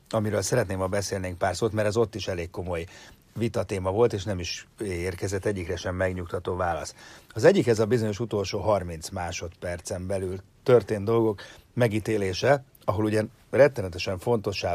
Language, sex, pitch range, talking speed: Hungarian, male, 90-120 Hz, 155 wpm